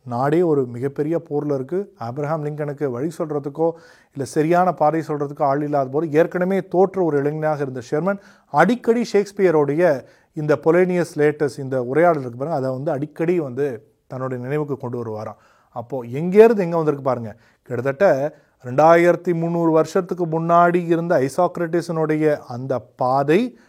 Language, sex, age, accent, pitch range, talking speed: Tamil, male, 30-49, native, 135-170 Hz, 135 wpm